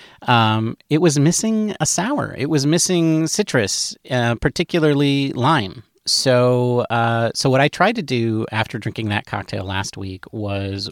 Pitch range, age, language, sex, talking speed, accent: 100-125 Hz, 30-49, English, male, 155 wpm, American